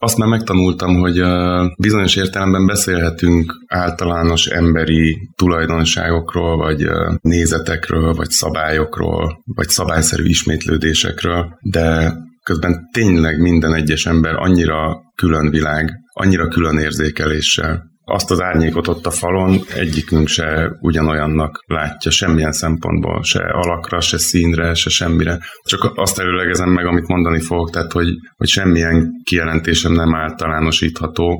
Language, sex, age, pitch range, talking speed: Hungarian, male, 30-49, 80-90 Hz, 115 wpm